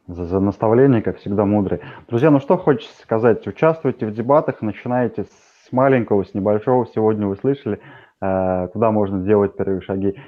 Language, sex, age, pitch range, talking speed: Russian, male, 20-39, 100-135 Hz, 150 wpm